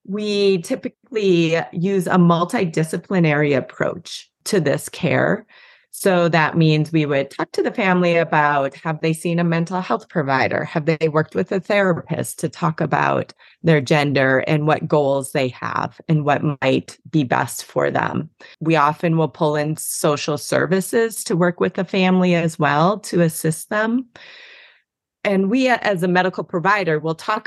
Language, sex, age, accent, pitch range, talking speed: English, female, 30-49, American, 150-190 Hz, 160 wpm